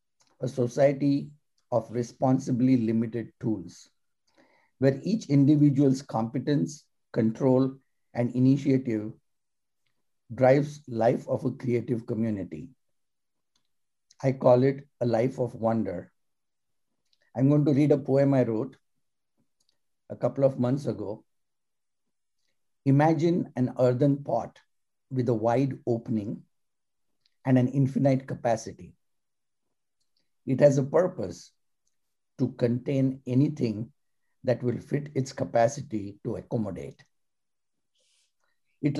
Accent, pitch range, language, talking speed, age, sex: Indian, 115-140 Hz, English, 100 wpm, 50-69, male